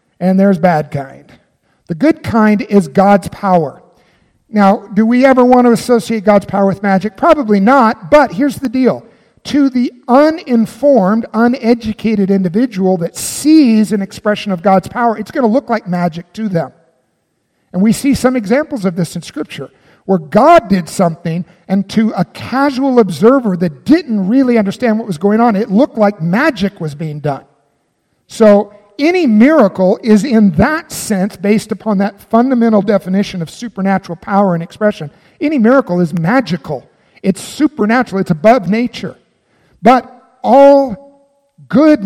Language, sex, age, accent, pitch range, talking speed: English, male, 50-69, American, 185-240 Hz, 155 wpm